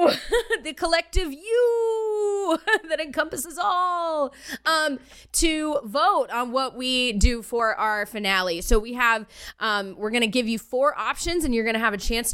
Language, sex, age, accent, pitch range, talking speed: English, female, 20-39, American, 190-240 Hz, 165 wpm